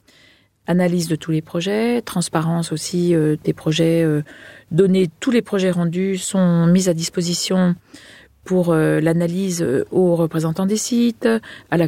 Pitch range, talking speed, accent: 155-190 Hz, 145 wpm, French